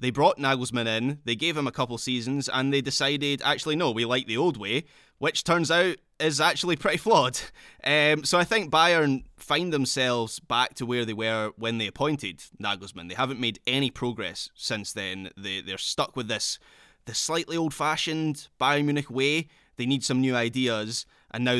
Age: 20-39